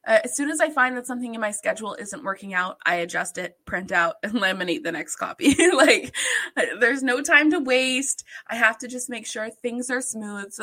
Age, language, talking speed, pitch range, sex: 20-39, English, 225 wpm, 195-265 Hz, female